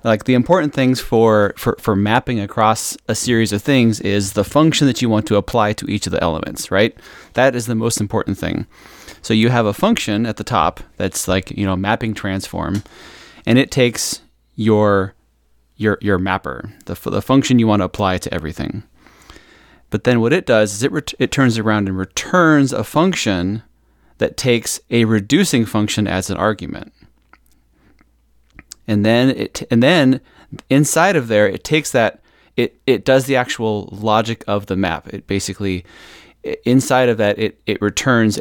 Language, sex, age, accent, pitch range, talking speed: English, male, 30-49, American, 100-120 Hz, 180 wpm